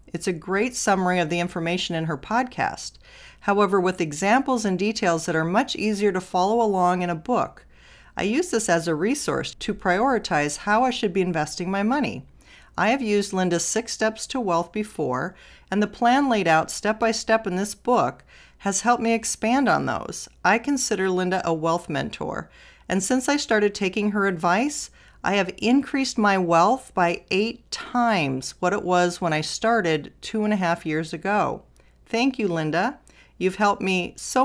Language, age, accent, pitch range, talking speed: English, 40-59, American, 165-220 Hz, 180 wpm